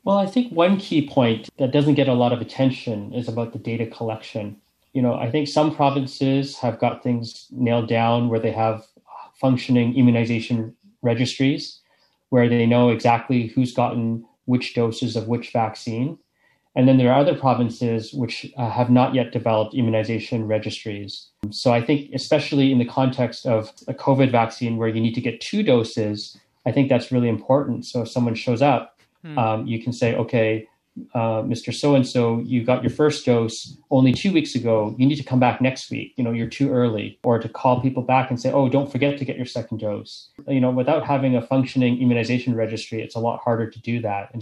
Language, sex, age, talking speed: English, male, 30-49, 200 wpm